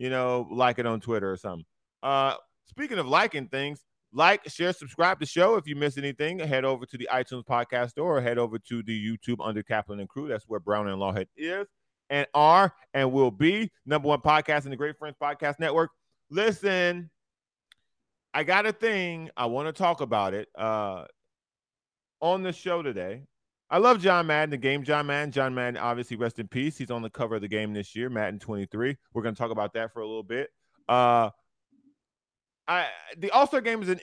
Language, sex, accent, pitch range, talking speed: English, male, American, 120-160 Hz, 205 wpm